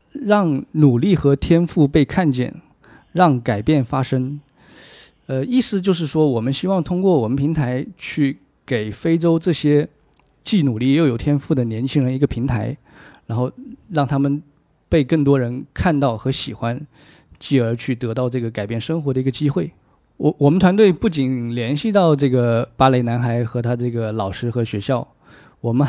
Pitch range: 125-150 Hz